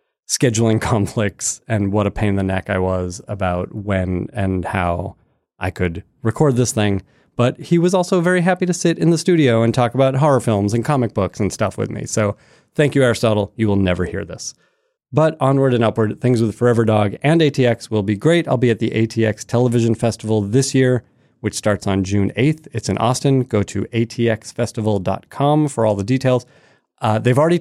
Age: 30-49